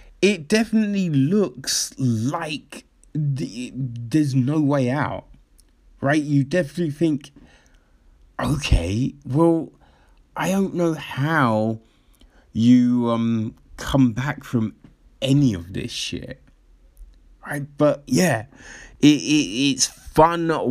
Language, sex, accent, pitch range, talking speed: English, male, British, 110-150 Hz, 100 wpm